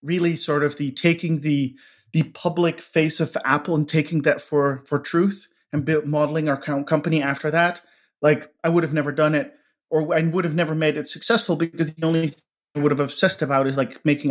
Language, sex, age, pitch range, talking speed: English, male, 40-59, 140-165 Hz, 215 wpm